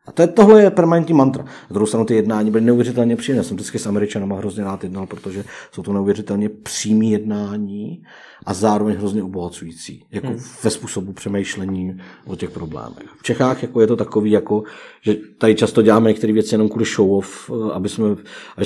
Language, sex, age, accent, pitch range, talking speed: Czech, male, 50-69, native, 105-135 Hz, 180 wpm